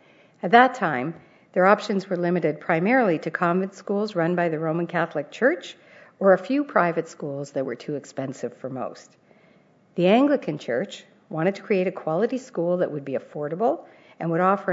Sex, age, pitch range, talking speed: female, 50-69, 160-200 Hz, 180 wpm